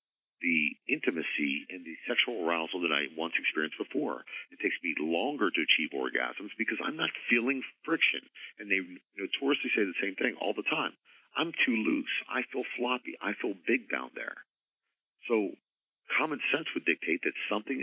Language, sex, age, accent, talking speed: English, male, 40-59, American, 170 wpm